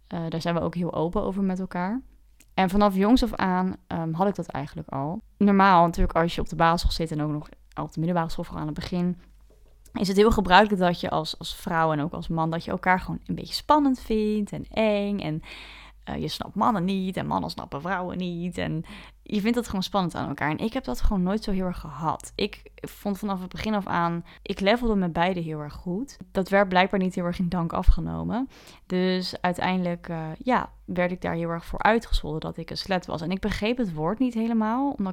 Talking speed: 235 wpm